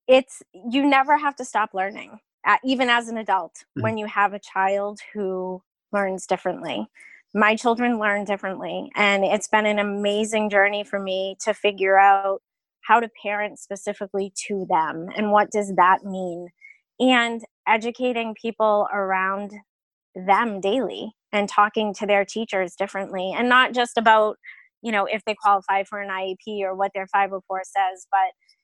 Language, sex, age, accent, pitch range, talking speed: English, female, 20-39, American, 195-235 Hz, 155 wpm